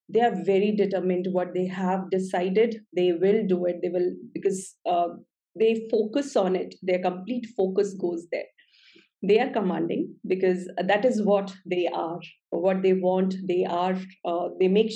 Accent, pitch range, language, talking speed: Indian, 185-225 Hz, English, 170 wpm